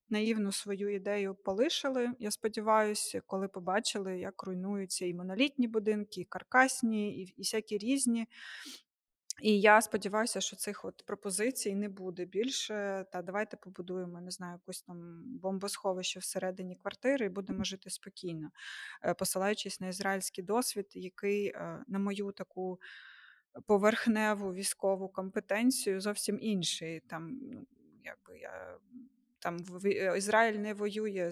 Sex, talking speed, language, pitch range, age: female, 125 wpm, Ukrainian, 185-220 Hz, 20-39